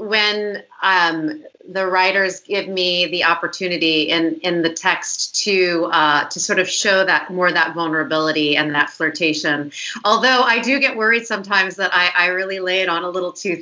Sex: female